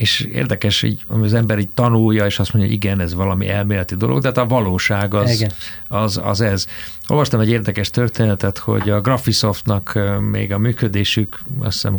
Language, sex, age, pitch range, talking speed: Hungarian, male, 50-69, 95-115 Hz, 175 wpm